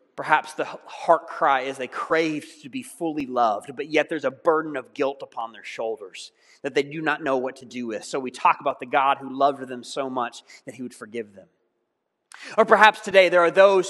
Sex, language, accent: male, English, American